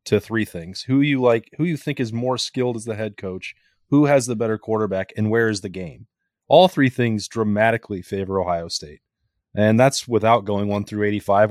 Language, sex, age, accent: English, male, 30-49, American